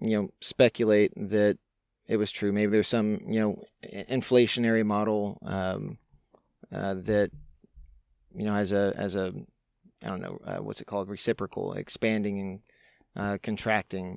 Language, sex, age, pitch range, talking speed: English, male, 20-39, 100-115 Hz, 150 wpm